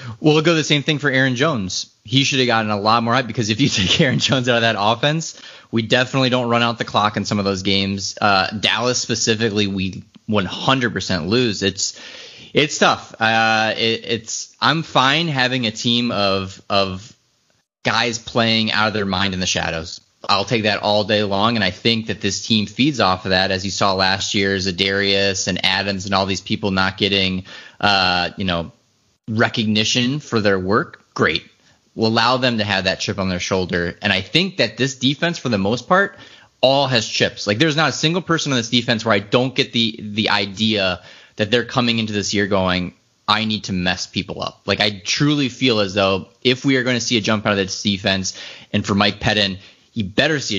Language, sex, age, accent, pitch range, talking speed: English, male, 20-39, American, 95-125 Hz, 215 wpm